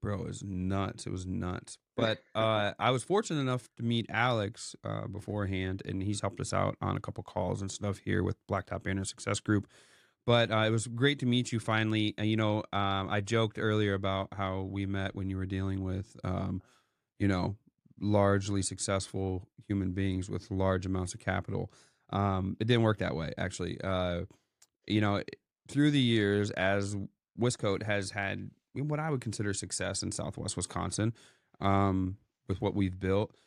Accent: American